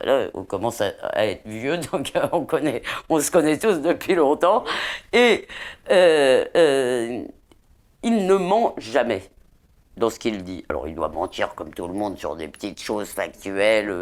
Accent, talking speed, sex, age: French, 165 wpm, female, 50-69